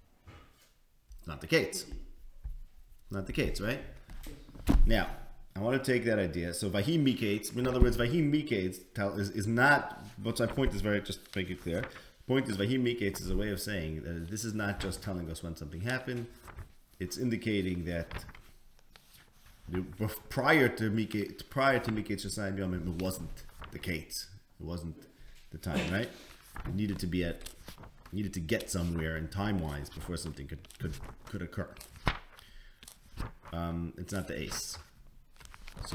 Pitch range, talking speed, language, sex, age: 90-115 Hz, 165 wpm, English, male, 30-49